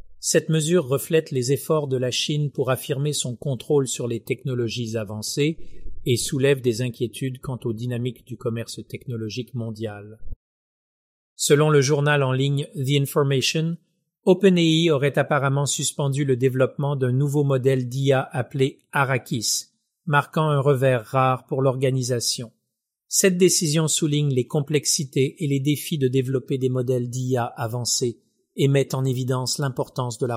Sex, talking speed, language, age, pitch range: male, 150 wpm, French, 40-59, 125-150 Hz